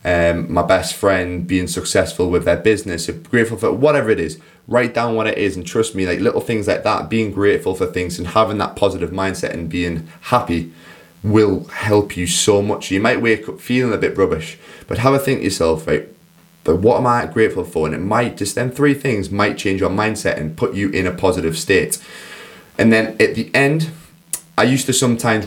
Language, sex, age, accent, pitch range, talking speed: English, male, 20-39, British, 85-110 Hz, 220 wpm